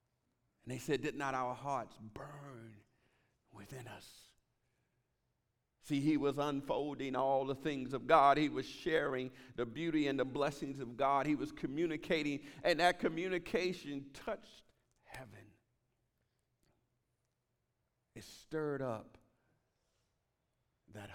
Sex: male